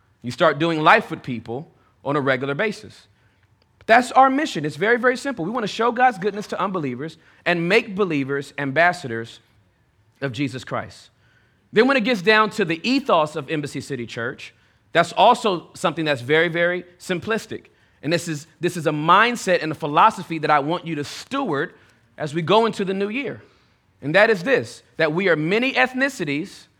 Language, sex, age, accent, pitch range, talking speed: English, male, 30-49, American, 150-215 Hz, 185 wpm